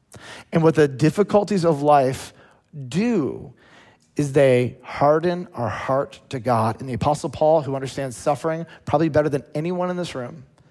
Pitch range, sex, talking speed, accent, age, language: 130-160 Hz, male, 155 wpm, American, 40-59, English